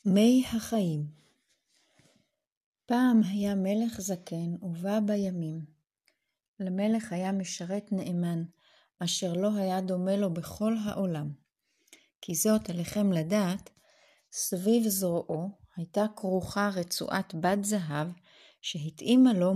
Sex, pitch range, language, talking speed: female, 175-215 Hz, Hebrew, 95 wpm